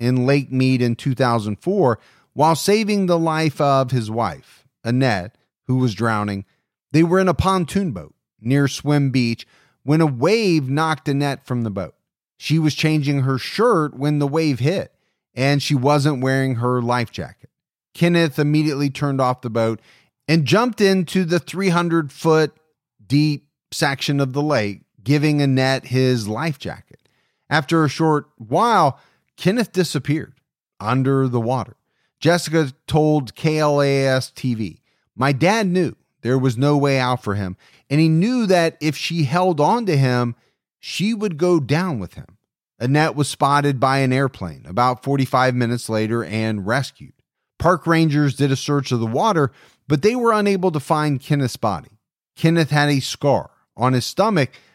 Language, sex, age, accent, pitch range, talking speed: English, male, 30-49, American, 125-160 Hz, 160 wpm